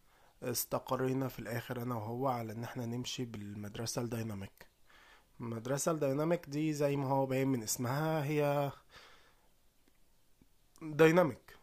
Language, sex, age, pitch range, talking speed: Arabic, male, 20-39, 115-140 Hz, 115 wpm